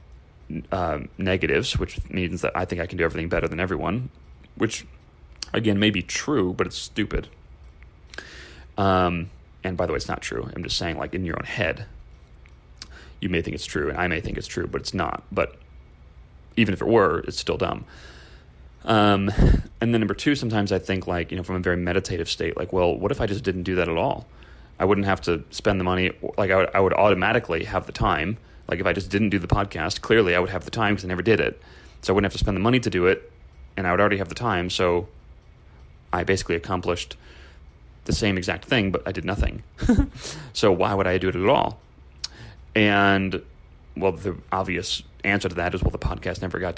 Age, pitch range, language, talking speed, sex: 30-49, 75-95 Hz, English, 220 wpm, male